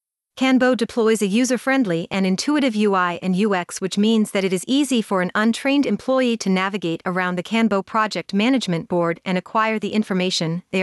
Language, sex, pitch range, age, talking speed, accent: English, female, 185-235 Hz, 30-49, 175 wpm, American